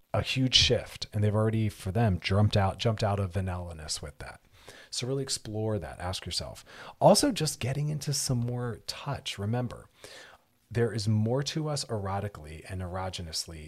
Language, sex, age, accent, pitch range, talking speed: English, male, 40-59, American, 95-120 Hz, 165 wpm